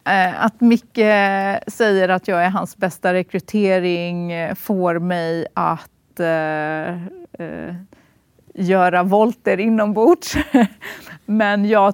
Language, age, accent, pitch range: Swedish, 30-49, native, 165-195 Hz